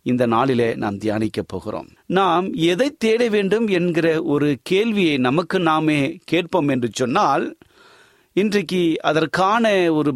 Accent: native